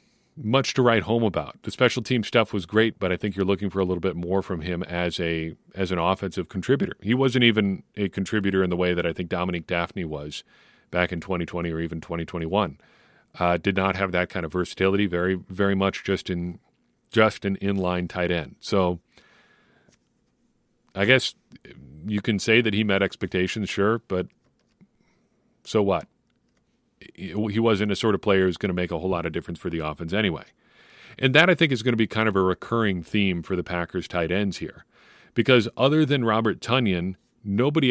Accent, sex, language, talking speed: American, male, English, 205 wpm